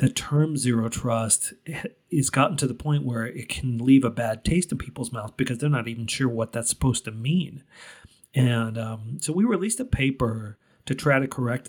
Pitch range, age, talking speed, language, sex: 115-135 Hz, 40-59, 205 wpm, English, male